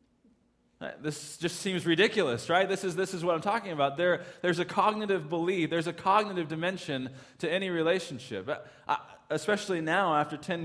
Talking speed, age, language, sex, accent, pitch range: 170 wpm, 20-39, English, male, American, 150-190 Hz